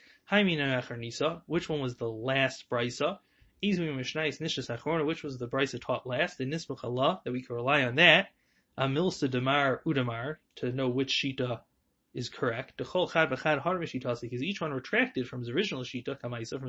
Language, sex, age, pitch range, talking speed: English, male, 30-49, 125-160 Hz, 130 wpm